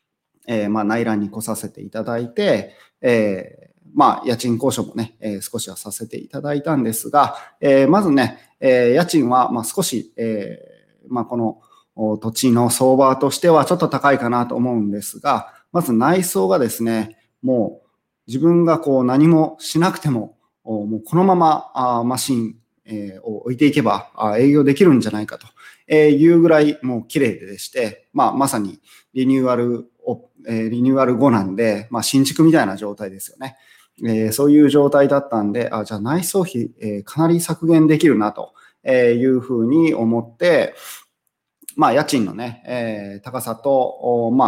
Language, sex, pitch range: Japanese, male, 110-140 Hz